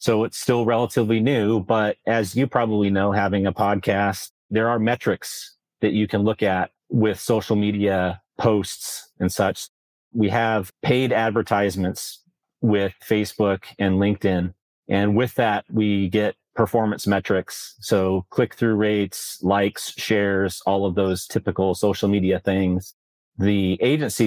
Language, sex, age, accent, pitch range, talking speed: English, male, 40-59, American, 95-110 Hz, 140 wpm